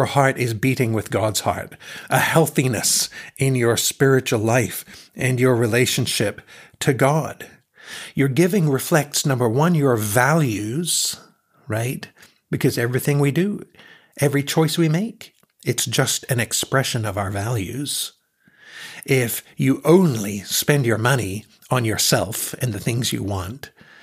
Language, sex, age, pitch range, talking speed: English, male, 60-79, 110-145 Hz, 130 wpm